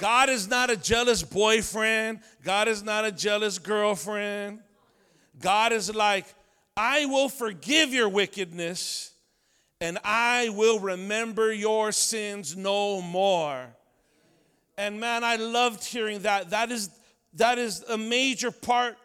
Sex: male